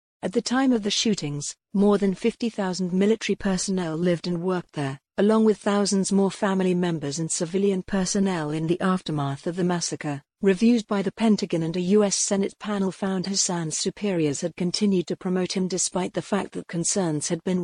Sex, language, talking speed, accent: female, English, 185 wpm, British